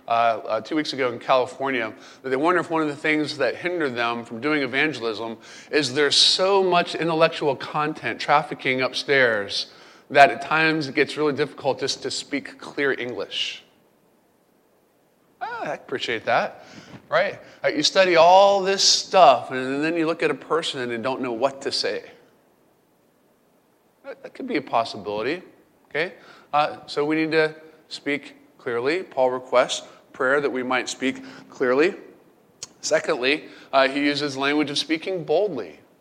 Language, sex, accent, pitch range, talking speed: English, male, American, 135-160 Hz, 155 wpm